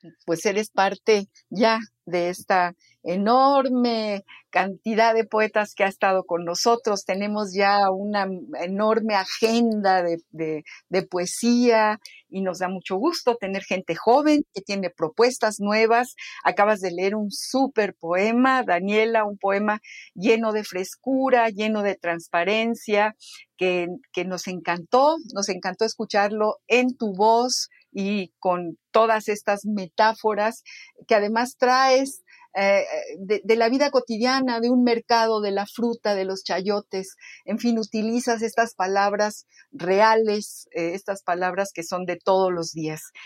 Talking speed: 135 wpm